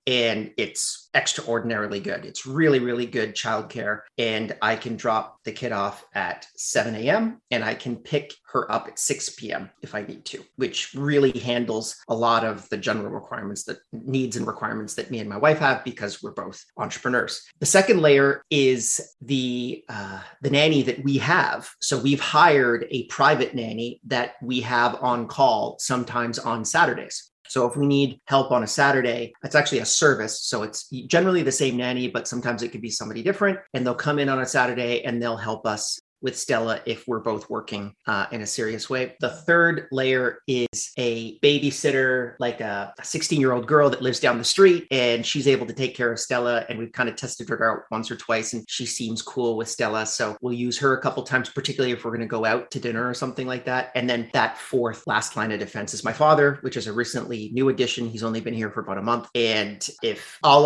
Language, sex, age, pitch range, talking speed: English, male, 30-49, 115-135 Hz, 215 wpm